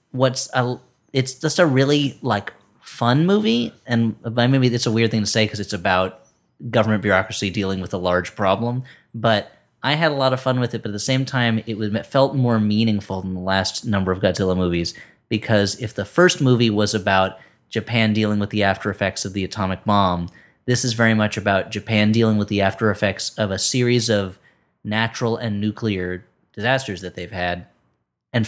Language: English